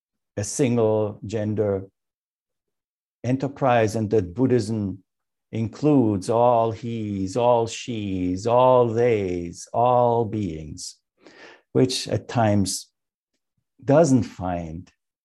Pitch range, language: 95-130 Hz, English